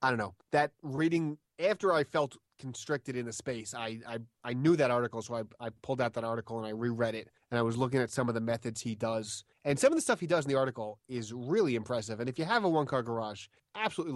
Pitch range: 110-135 Hz